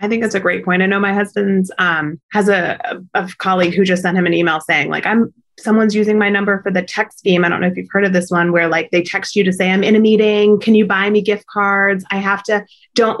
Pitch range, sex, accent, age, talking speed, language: 185-230 Hz, female, American, 30-49, 280 wpm, English